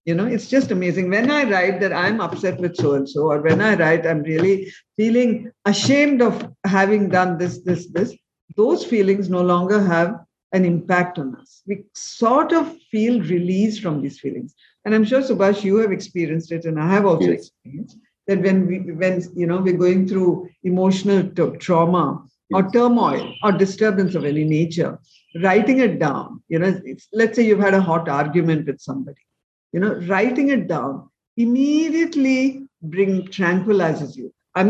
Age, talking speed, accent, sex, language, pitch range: 50-69, 170 wpm, Indian, female, English, 170-220 Hz